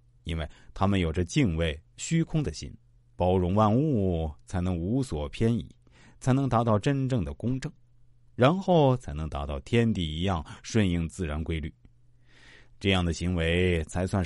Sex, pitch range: male, 85-120 Hz